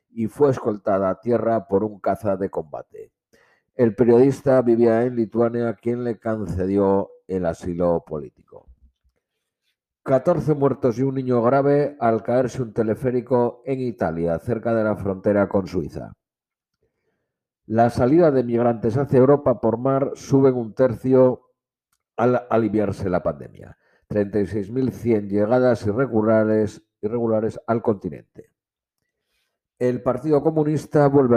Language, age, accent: Spanish, 50-69, Spanish